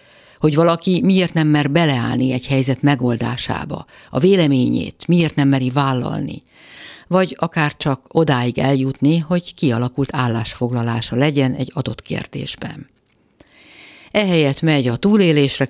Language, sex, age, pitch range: Hungarian, female, 50-69, 125-165 Hz